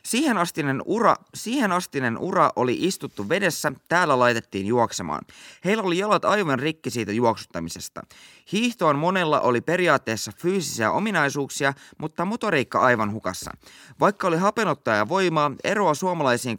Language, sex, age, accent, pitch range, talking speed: Finnish, male, 20-39, native, 115-185 Hz, 120 wpm